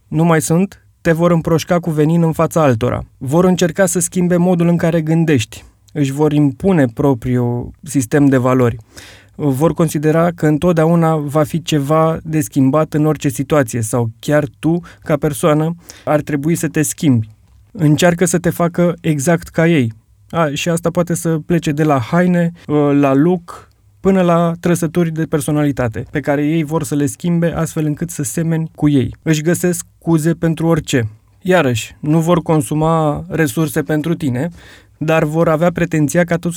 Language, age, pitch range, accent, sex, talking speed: Romanian, 20-39, 140-170 Hz, native, male, 165 wpm